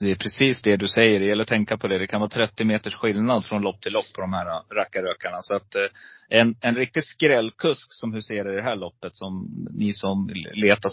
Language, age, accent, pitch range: Swedish, 30-49, native, 95-110 Hz